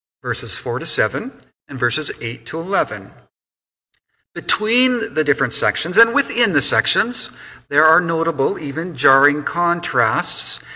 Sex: male